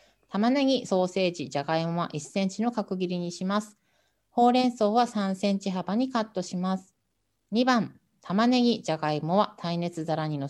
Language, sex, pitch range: Japanese, female, 165-225 Hz